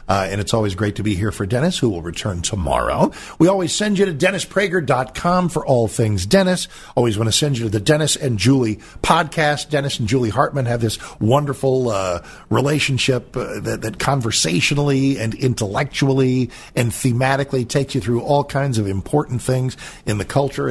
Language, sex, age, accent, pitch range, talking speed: English, male, 50-69, American, 105-150 Hz, 185 wpm